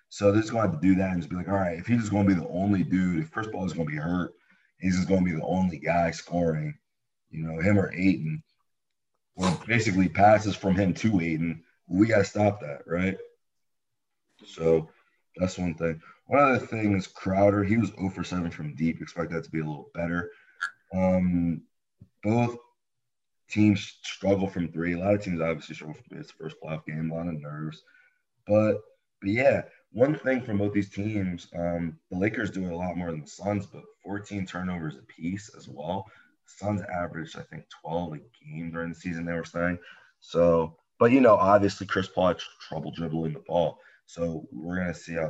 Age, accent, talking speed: 30-49, American, 215 wpm